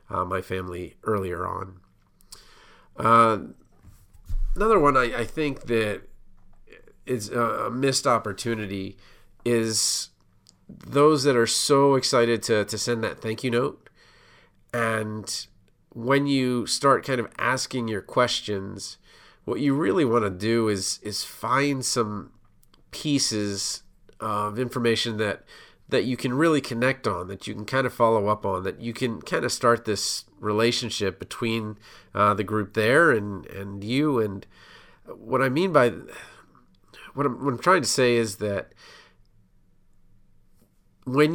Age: 40-59